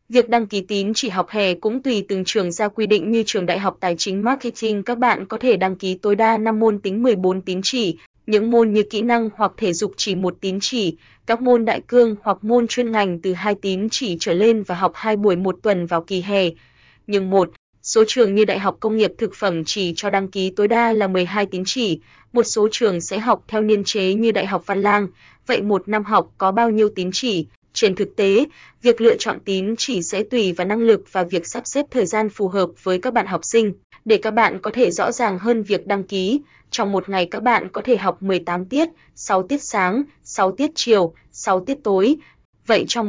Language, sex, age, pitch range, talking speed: Vietnamese, female, 20-39, 190-225 Hz, 240 wpm